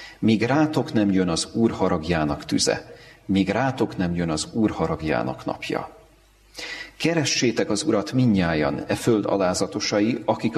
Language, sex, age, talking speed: Hungarian, male, 40-59, 135 wpm